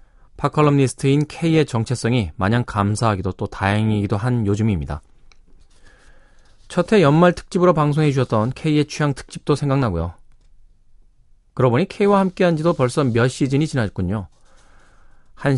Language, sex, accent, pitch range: Korean, male, native, 100-140 Hz